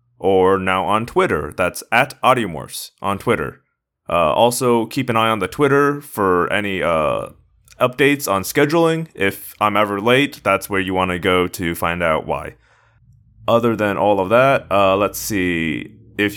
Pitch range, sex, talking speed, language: 95-130 Hz, male, 170 wpm, English